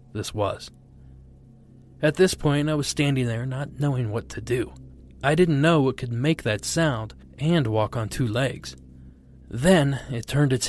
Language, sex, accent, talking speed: English, male, American, 175 wpm